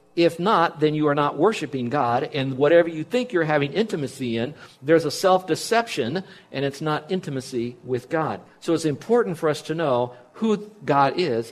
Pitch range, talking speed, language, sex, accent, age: 140-180 Hz, 180 wpm, English, male, American, 50-69